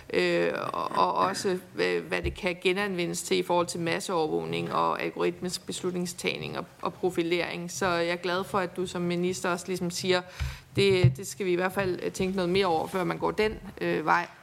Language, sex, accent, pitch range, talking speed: Danish, female, native, 175-205 Hz, 205 wpm